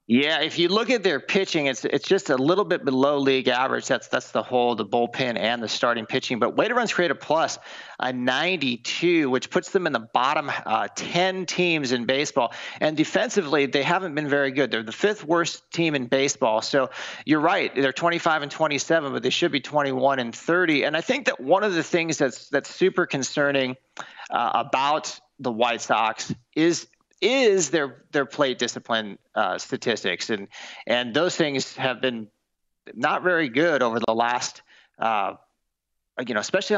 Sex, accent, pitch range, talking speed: male, American, 125-175 Hz, 190 wpm